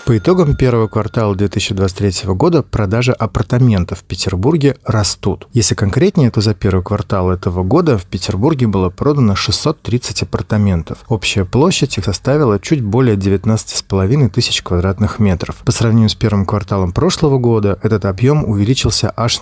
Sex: male